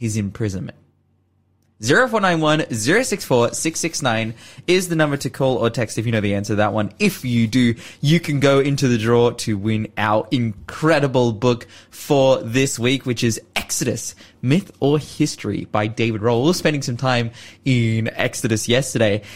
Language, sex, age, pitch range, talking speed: English, male, 20-39, 105-135 Hz, 165 wpm